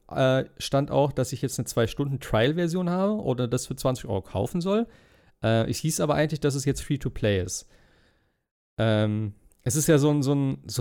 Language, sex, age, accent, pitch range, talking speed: German, male, 40-59, German, 110-150 Hz, 180 wpm